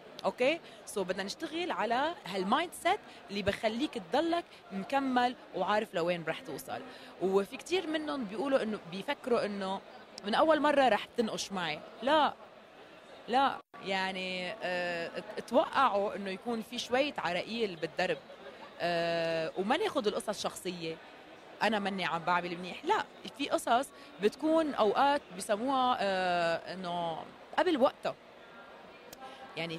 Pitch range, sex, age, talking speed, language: 185-260 Hz, female, 20-39, 120 wpm, Arabic